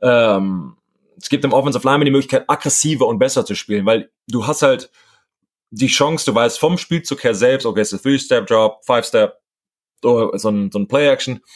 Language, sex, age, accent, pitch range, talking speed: German, male, 30-49, German, 105-130 Hz, 195 wpm